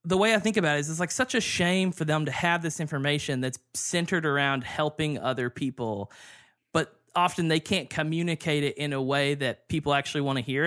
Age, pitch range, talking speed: 20-39, 135-170 Hz, 220 wpm